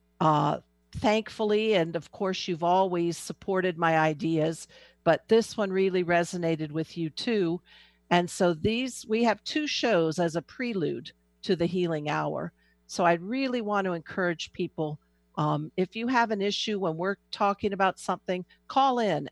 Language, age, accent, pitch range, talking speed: English, 50-69, American, 155-205 Hz, 160 wpm